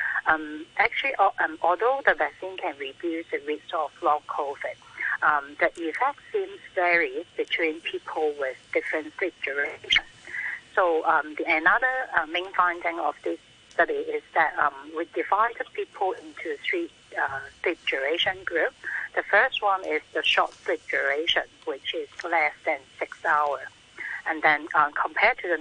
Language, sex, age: English, female, 60-79